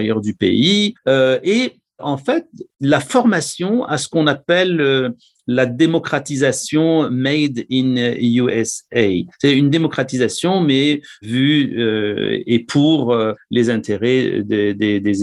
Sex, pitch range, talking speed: male, 120-165 Hz, 135 wpm